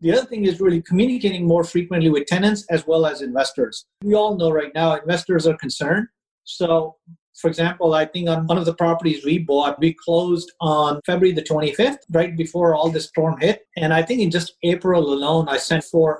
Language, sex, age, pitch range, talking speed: English, male, 50-69, 155-185 Hz, 205 wpm